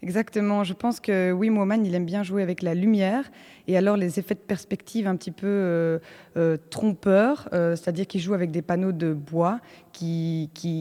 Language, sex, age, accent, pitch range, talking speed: French, female, 20-39, French, 160-190 Hz, 200 wpm